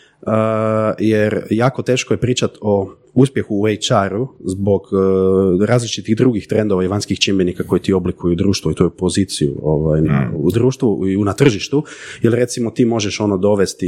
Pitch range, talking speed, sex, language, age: 95-125 Hz, 175 wpm, male, Croatian, 30-49